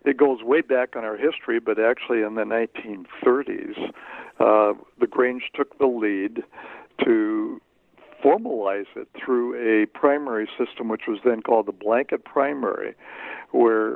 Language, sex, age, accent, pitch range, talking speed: English, male, 60-79, American, 115-145 Hz, 140 wpm